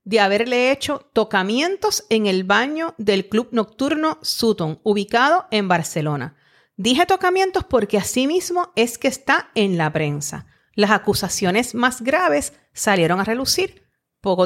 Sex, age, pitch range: female, 40-59, 195-275 Hz